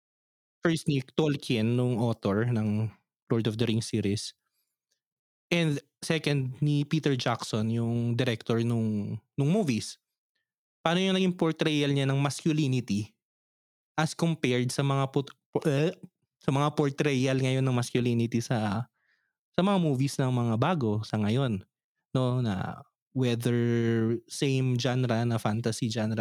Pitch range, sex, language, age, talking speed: 115-155 Hz, male, Filipino, 20-39, 130 wpm